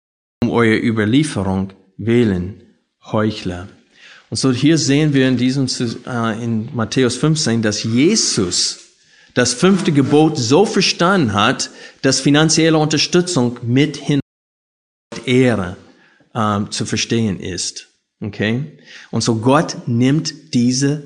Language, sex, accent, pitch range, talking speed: German, male, German, 110-145 Hz, 115 wpm